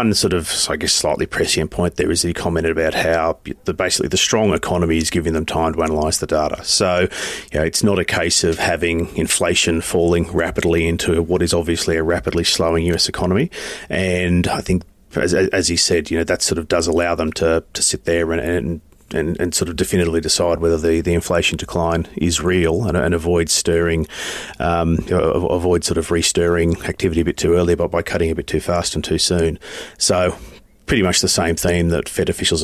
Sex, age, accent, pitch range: male, 30-49, Australian, 80-85 Hz